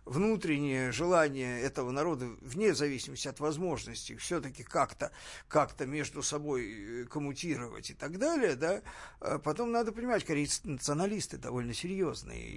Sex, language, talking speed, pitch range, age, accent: male, Russian, 125 wpm, 135-200 Hz, 50-69, native